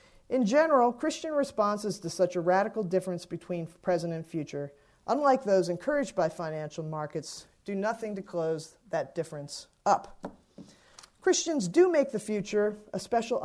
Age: 40-59